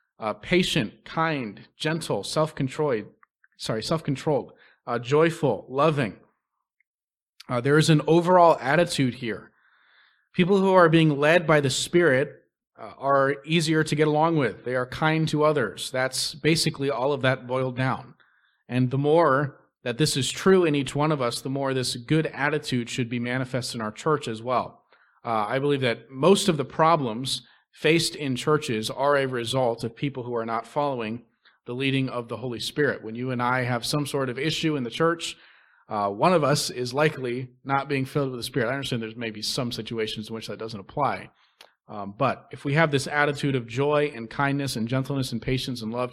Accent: American